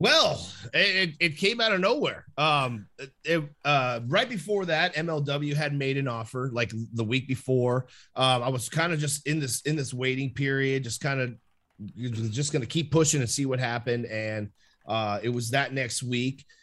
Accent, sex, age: American, male, 30-49